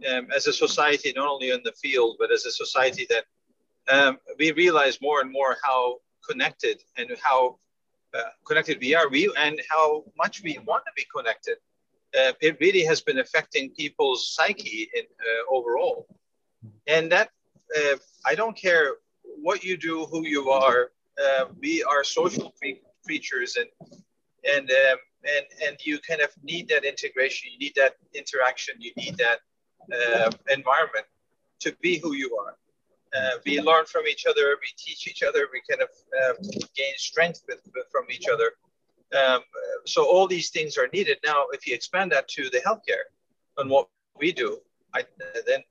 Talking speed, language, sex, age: 170 wpm, English, male, 50-69